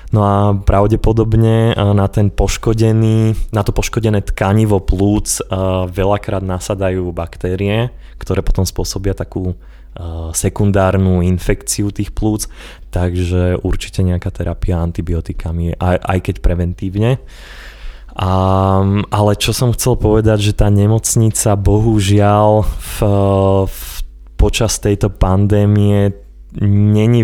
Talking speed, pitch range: 105 wpm, 95-105 Hz